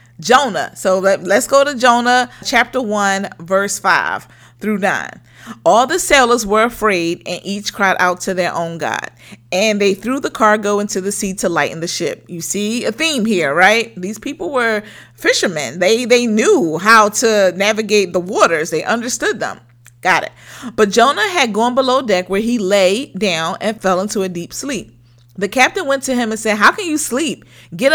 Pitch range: 185-245 Hz